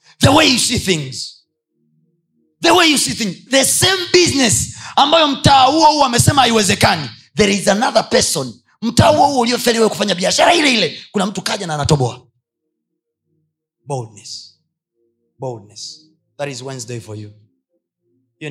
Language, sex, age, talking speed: Swahili, male, 30-49, 140 wpm